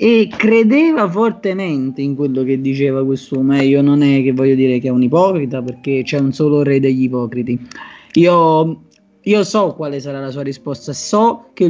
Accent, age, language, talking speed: native, 30-49, Italian, 185 wpm